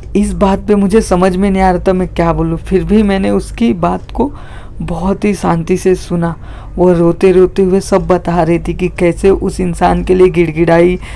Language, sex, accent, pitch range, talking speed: Hindi, female, native, 170-195 Hz, 210 wpm